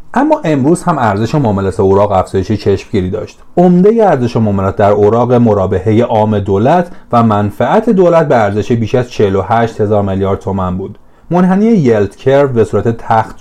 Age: 30-49